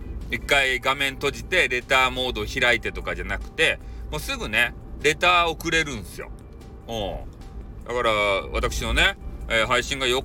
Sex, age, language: male, 40-59, Japanese